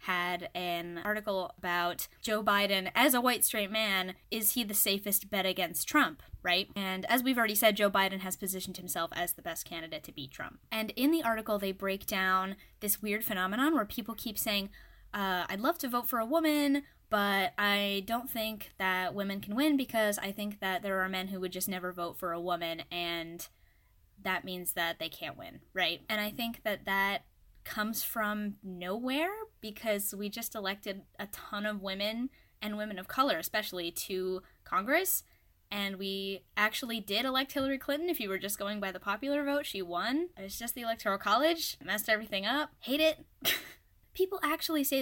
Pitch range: 190-250 Hz